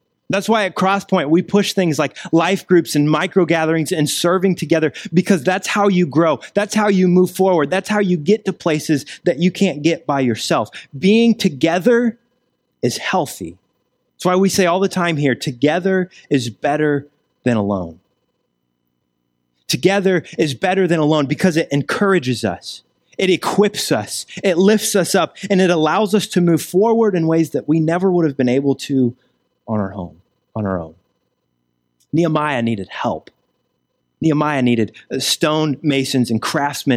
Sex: male